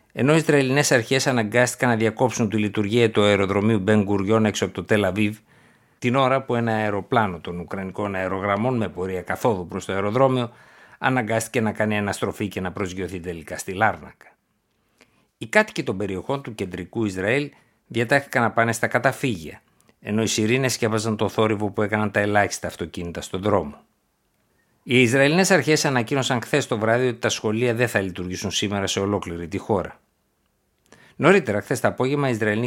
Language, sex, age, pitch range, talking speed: Greek, male, 60-79, 100-125 Hz, 165 wpm